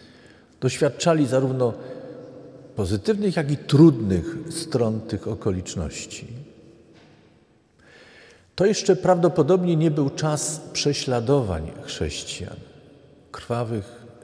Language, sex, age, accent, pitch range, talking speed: Polish, male, 50-69, native, 115-155 Hz, 75 wpm